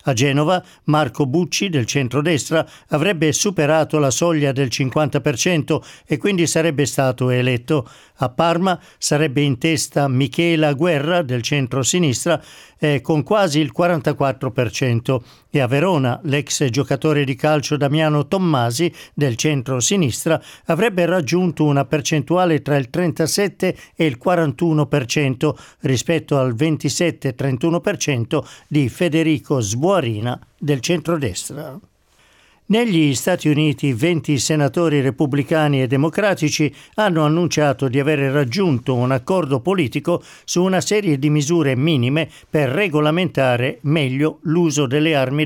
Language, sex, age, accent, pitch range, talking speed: Italian, male, 50-69, native, 140-170 Hz, 115 wpm